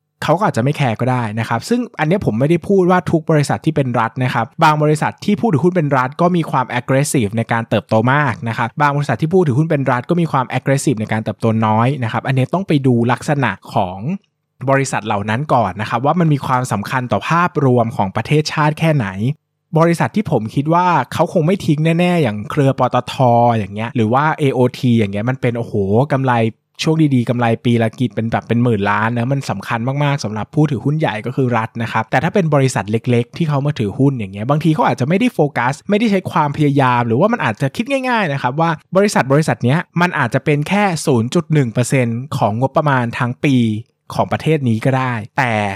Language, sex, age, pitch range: Thai, male, 20-39, 115-155 Hz